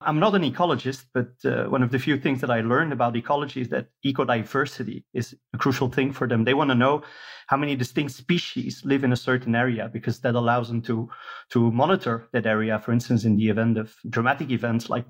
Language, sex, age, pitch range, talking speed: English, male, 30-49, 115-135 Hz, 225 wpm